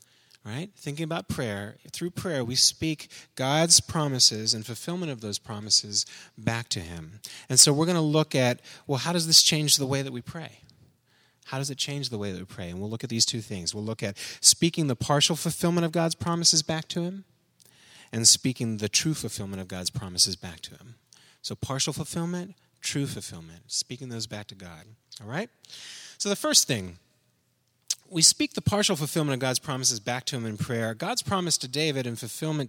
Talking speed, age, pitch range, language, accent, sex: 200 wpm, 30-49, 110-150 Hz, English, American, male